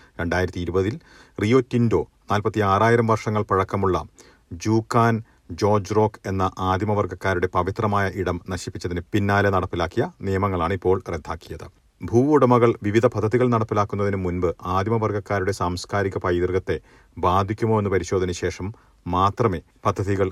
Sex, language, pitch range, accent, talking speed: male, Malayalam, 90-110 Hz, native, 105 wpm